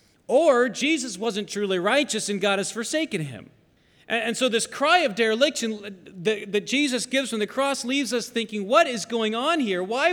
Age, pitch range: 30-49, 180-250 Hz